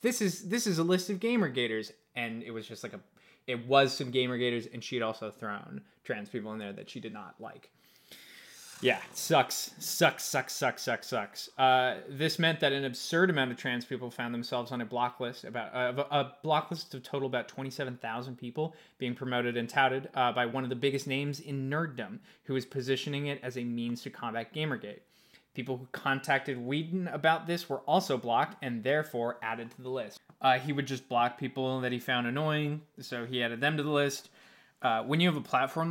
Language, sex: English, male